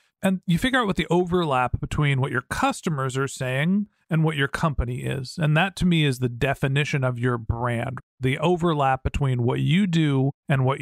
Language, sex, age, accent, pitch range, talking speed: English, male, 40-59, American, 130-165 Hz, 200 wpm